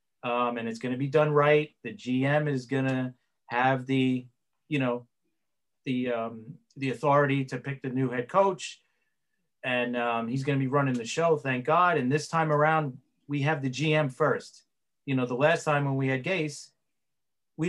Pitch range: 130-160 Hz